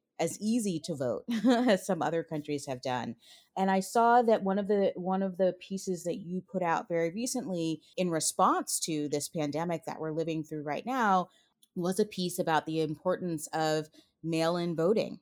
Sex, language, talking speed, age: female, English, 185 wpm, 30-49